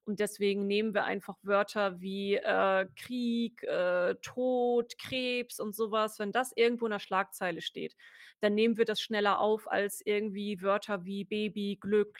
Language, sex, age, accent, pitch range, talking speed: German, female, 30-49, German, 200-235 Hz, 160 wpm